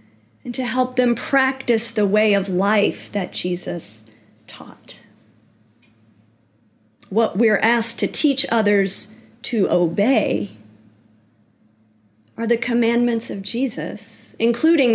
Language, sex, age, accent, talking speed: English, female, 40-59, American, 105 wpm